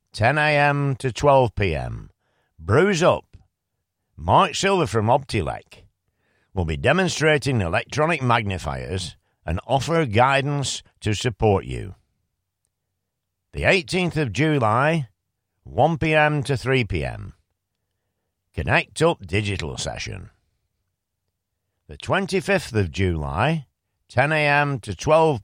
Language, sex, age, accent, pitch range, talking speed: English, male, 50-69, British, 95-145 Hz, 100 wpm